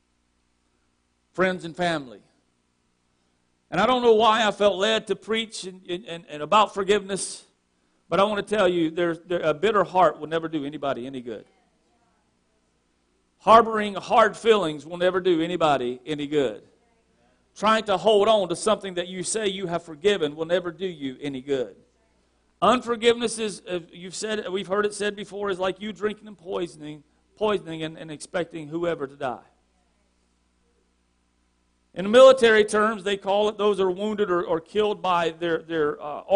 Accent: American